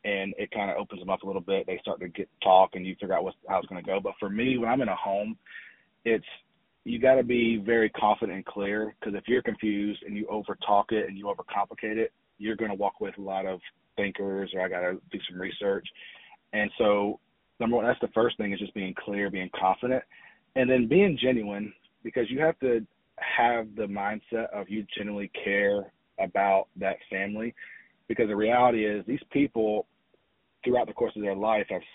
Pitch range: 100-120 Hz